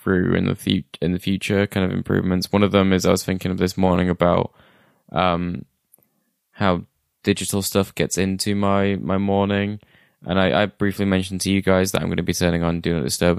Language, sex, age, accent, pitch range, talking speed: English, male, 20-39, British, 90-100 Hz, 215 wpm